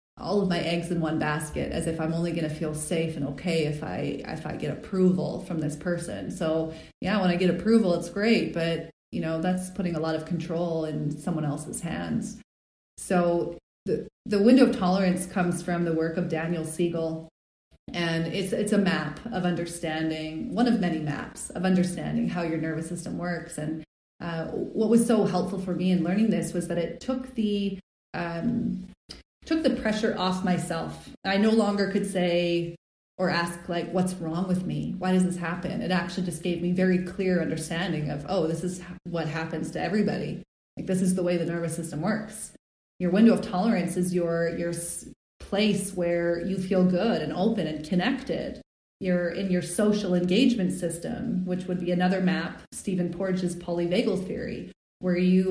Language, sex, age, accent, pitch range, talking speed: English, female, 30-49, American, 165-190 Hz, 190 wpm